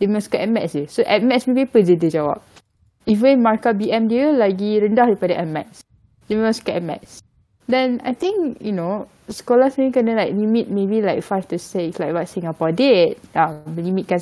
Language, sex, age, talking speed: Malay, female, 10-29, 200 wpm